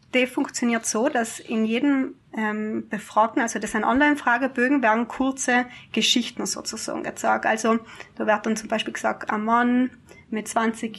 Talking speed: 155 wpm